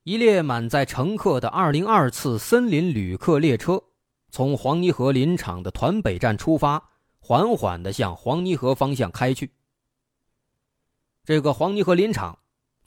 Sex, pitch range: male, 115-180 Hz